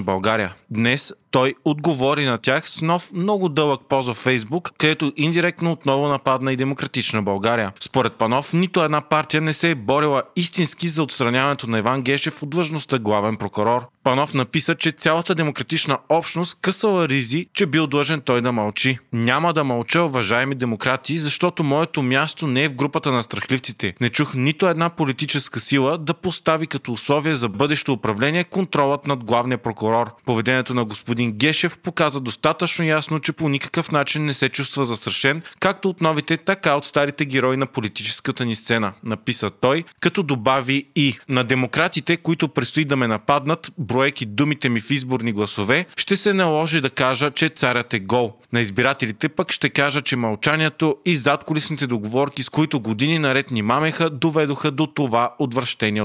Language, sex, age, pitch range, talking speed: Bulgarian, male, 30-49, 120-160 Hz, 165 wpm